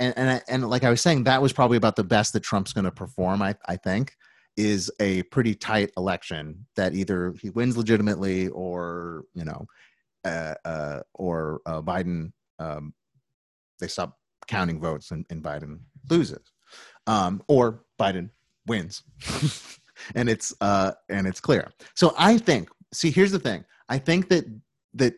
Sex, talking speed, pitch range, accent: male, 165 wpm, 90-125 Hz, American